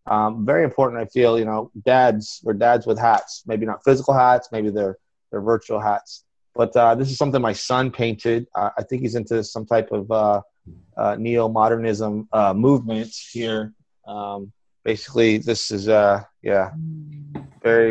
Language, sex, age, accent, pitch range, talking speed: English, male, 30-49, American, 105-120 Hz, 165 wpm